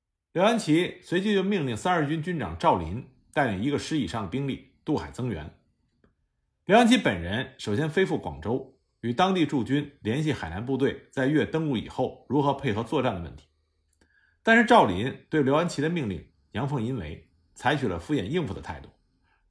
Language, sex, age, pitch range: Chinese, male, 50-69, 105-165 Hz